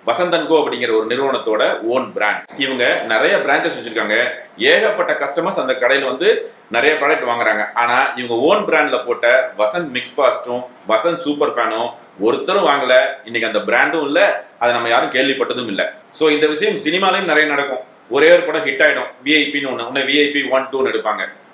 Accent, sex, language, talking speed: native, male, Tamil, 145 wpm